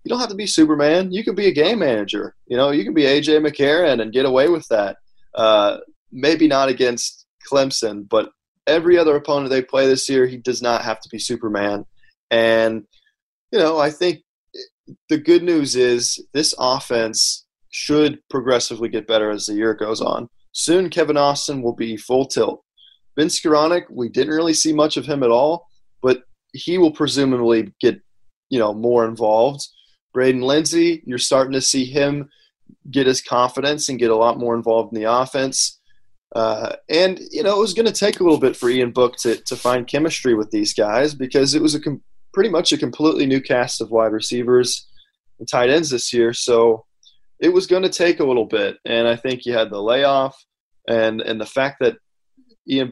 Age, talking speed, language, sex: 20-39, 195 wpm, English, male